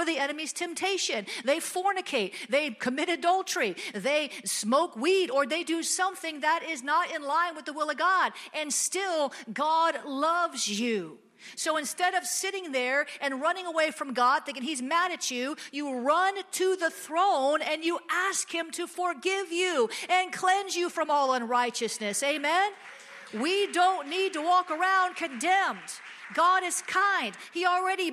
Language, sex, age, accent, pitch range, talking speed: English, female, 50-69, American, 260-350 Hz, 165 wpm